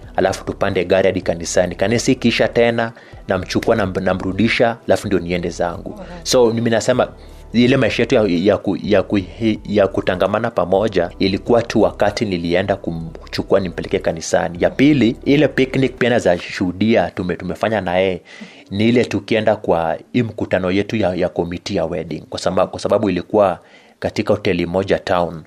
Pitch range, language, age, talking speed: 95-115 Hz, Swahili, 30-49, 145 wpm